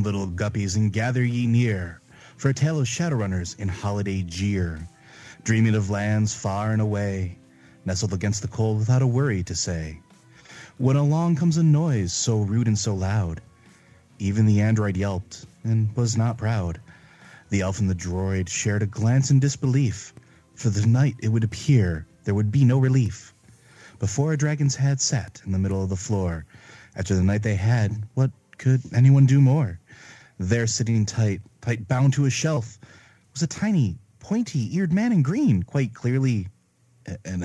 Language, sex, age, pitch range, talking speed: English, male, 30-49, 100-140 Hz, 175 wpm